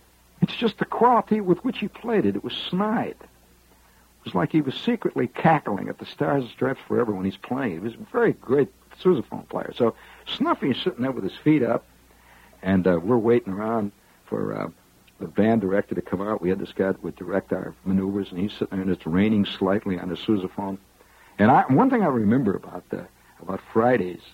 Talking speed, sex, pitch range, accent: 210 wpm, male, 85-125 Hz, American